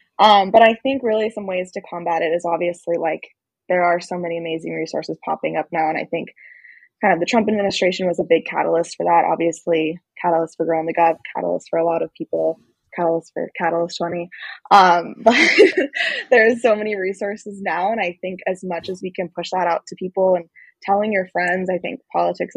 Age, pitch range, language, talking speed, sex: 10-29, 170-195 Hz, English, 210 wpm, female